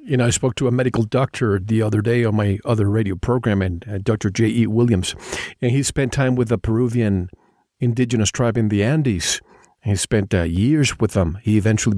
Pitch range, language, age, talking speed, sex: 105-130 Hz, English, 50-69, 205 wpm, male